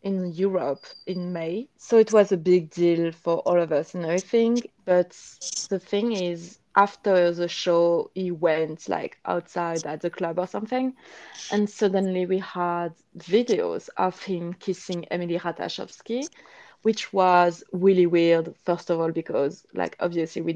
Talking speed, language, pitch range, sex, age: 155 wpm, English, 170-195 Hz, female, 20-39